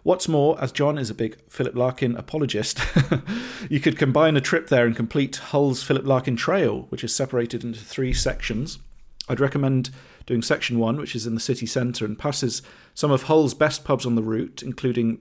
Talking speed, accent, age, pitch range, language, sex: 195 wpm, British, 40-59, 110-130 Hz, English, male